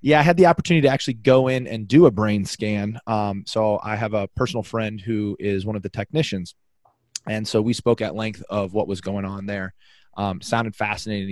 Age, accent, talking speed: 20-39, American, 225 wpm